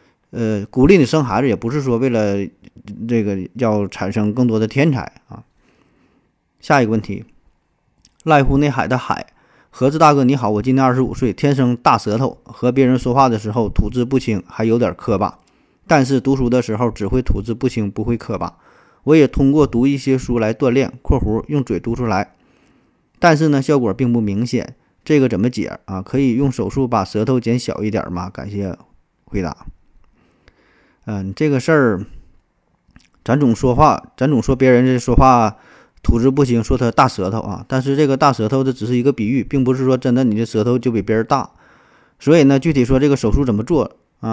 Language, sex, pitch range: Chinese, male, 110-135 Hz